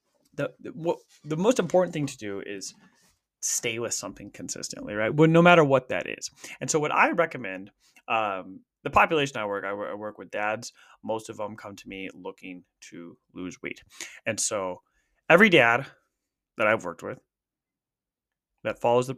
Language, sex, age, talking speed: English, male, 20-39, 180 wpm